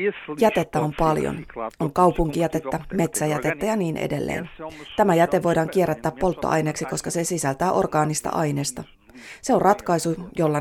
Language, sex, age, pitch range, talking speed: Finnish, female, 30-49, 155-185 Hz, 130 wpm